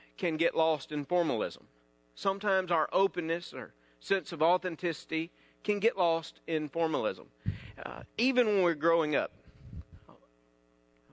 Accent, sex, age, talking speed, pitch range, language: American, male, 40-59, 130 wpm, 145-205 Hz, English